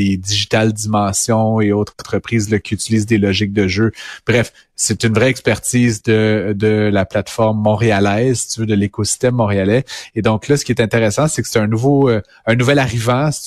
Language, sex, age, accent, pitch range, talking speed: French, male, 30-49, Canadian, 110-130 Hz, 200 wpm